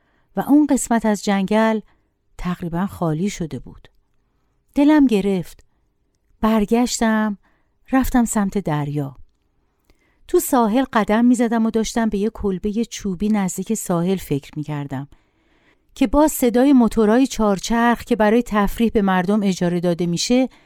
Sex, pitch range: female, 175-240 Hz